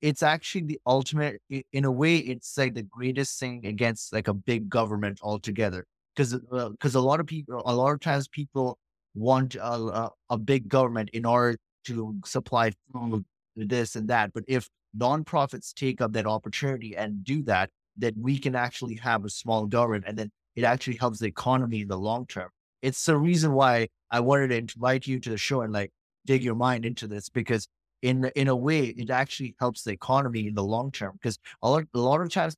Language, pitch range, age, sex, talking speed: English, 110-130 Hz, 30-49, male, 205 wpm